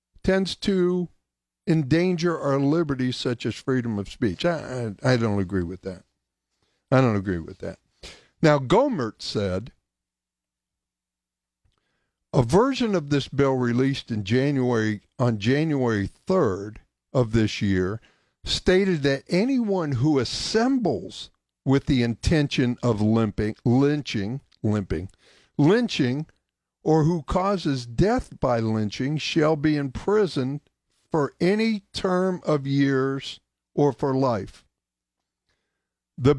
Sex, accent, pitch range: male, American, 115-170 Hz